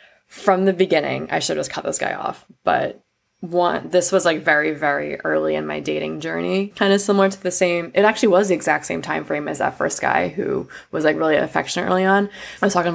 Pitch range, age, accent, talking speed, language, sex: 155-195 Hz, 20-39, American, 235 wpm, English, female